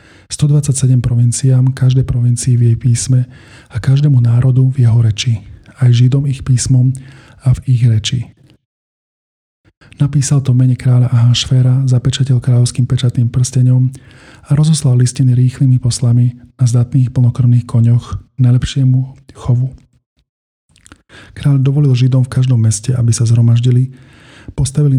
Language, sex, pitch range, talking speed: Slovak, male, 120-130 Hz, 120 wpm